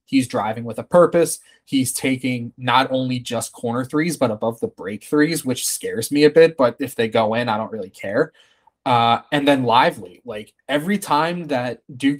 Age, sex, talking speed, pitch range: 20-39, male, 195 wpm, 120-145 Hz